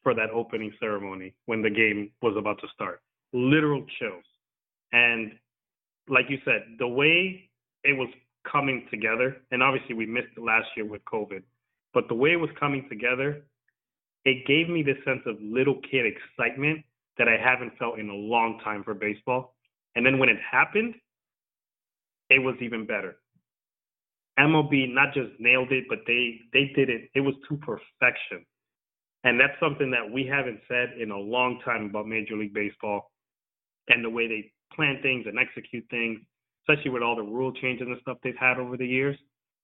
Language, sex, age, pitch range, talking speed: English, male, 30-49, 115-135 Hz, 180 wpm